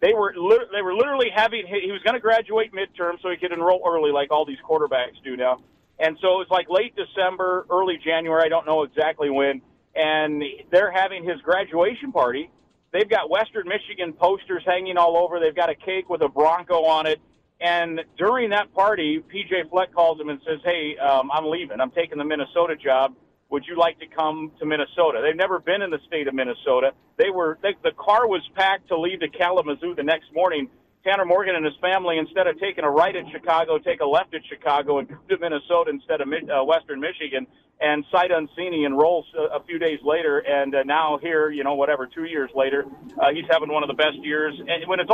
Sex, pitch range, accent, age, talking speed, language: male, 155-195 Hz, American, 50-69, 215 wpm, English